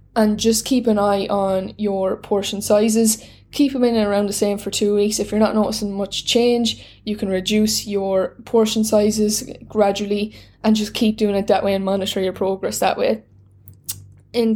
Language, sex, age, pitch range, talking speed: English, female, 10-29, 195-220 Hz, 190 wpm